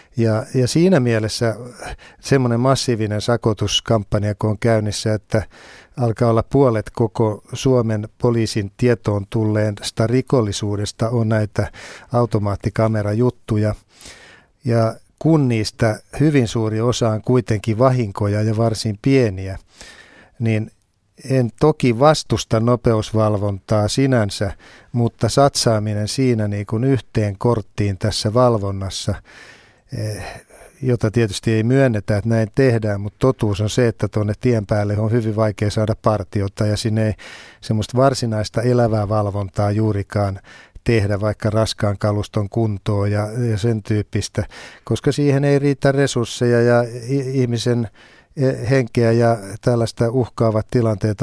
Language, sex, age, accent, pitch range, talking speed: Finnish, male, 50-69, native, 105-120 Hz, 115 wpm